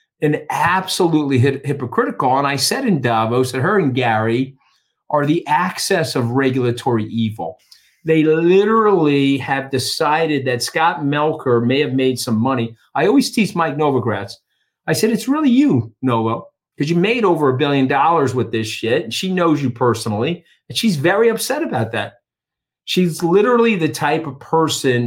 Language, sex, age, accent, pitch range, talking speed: English, male, 50-69, American, 125-165 Hz, 165 wpm